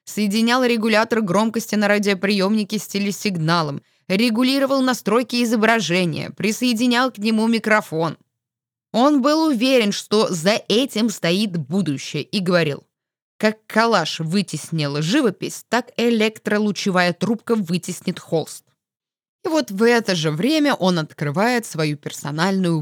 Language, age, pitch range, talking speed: Russian, 20-39, 160-220 Hz, 115 wpm